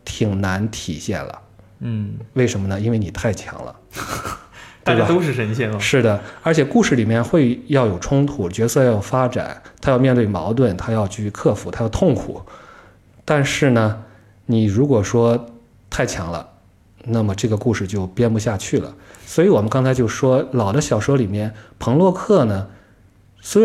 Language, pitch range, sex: Chinese, 105-145 Hz, male